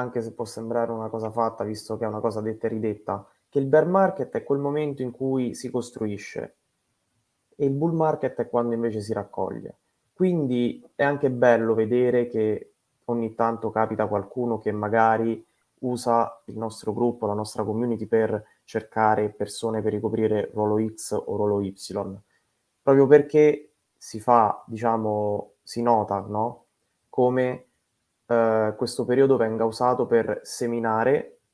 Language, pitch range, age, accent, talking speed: Italian, 110-125 Hz, 20-39, native, 150 wpm